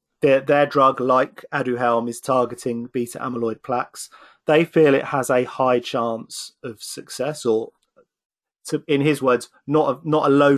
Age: 30-49